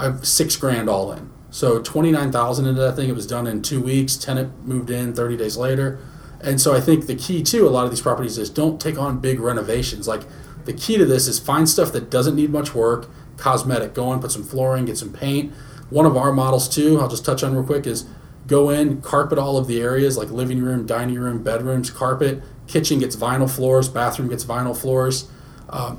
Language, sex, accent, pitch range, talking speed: English, male, American, 120-140 Hz, 225 wpm